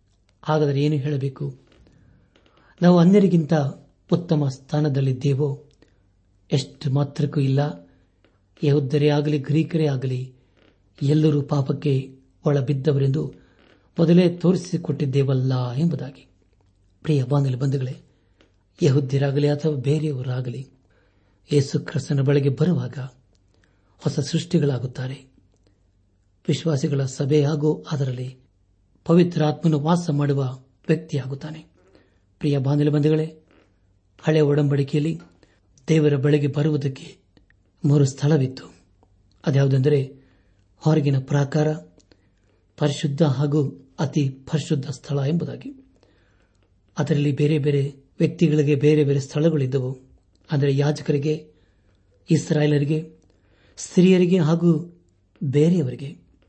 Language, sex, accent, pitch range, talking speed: Kannada, male, native, 100-150 Hz, 75 wpm